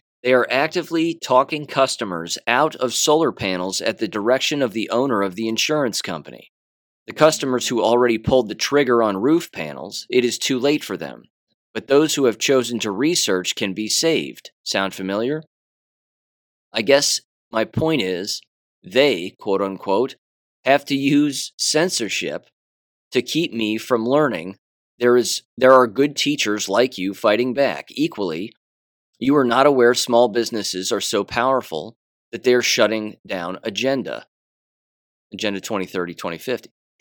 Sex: male